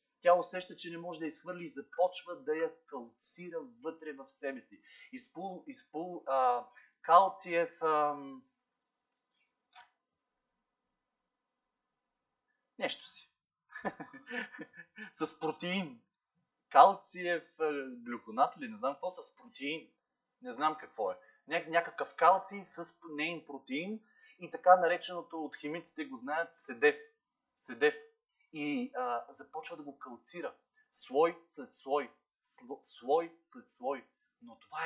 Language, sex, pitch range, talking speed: Bulgarian, male, 170-250 Hz, 115 wpm